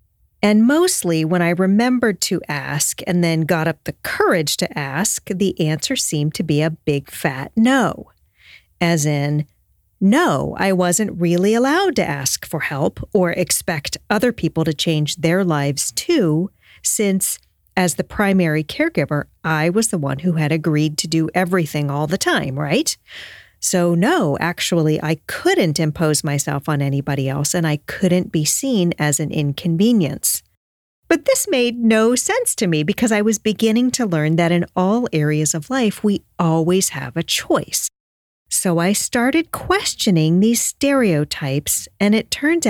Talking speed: 160 wpm